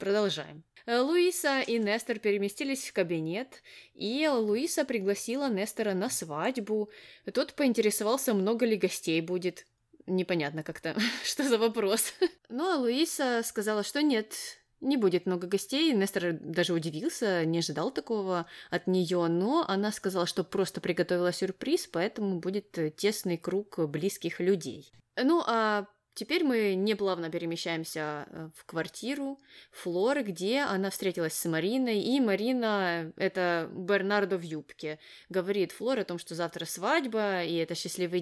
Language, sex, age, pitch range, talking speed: Russian, female, 20-39, 170-235 Hz, 135 wpm